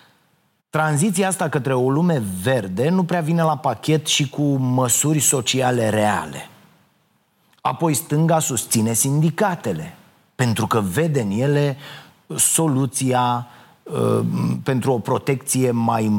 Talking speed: 115 wpm